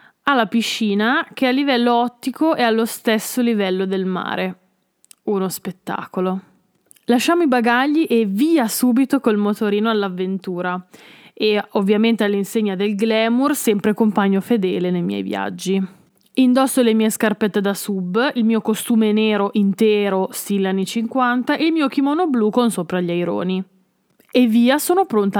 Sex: female